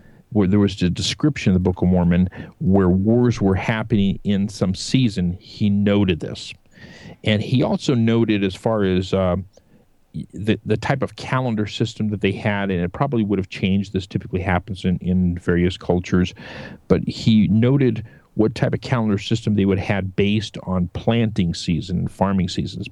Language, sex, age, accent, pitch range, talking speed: English, male, 50-69, American, 95-115 Hz, 180 wpm